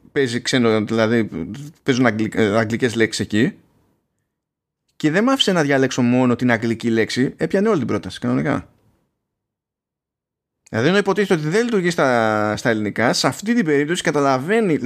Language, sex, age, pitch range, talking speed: Greek, male, 20-39, 115-160 Hz, 140 wpm